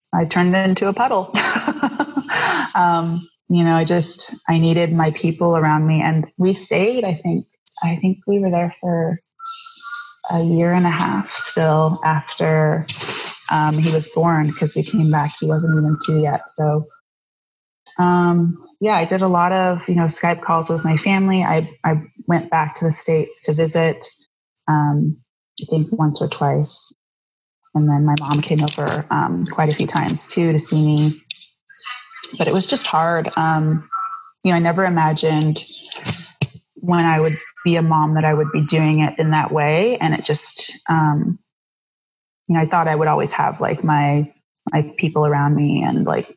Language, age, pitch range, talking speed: English, 20-39, 155-180 Hz, 180 wpm